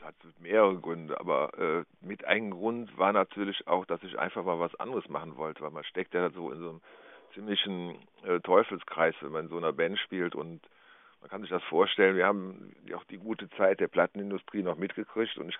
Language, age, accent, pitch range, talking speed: German, 50-69, German, 85-100 Hz, 215 wpm